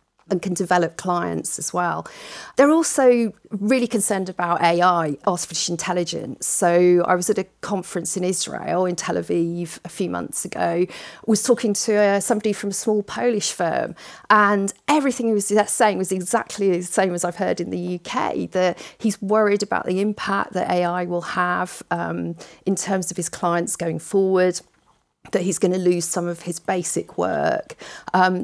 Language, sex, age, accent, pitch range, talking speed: English, female, 40-59, British, 175-215 Hz, 175 wpm